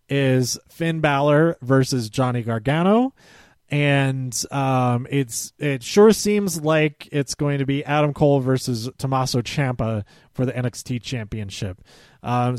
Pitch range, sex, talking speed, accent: 125-170 Hz, male, 130 wpm, American